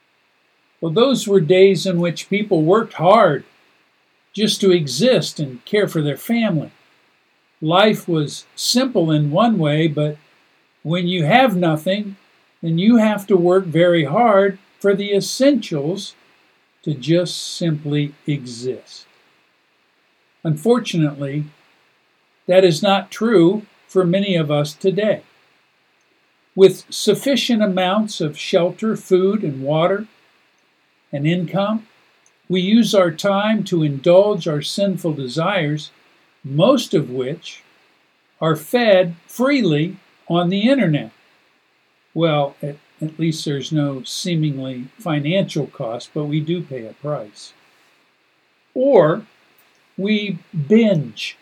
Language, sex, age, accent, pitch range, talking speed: English, male, 50-69, American, 150-200 Hz, 115 wpm